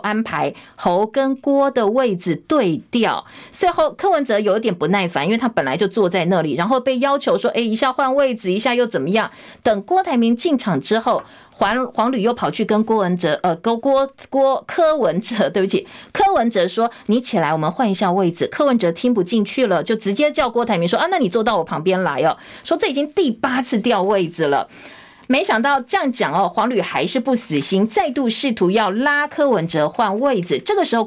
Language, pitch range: Chinese, 200-270 Hz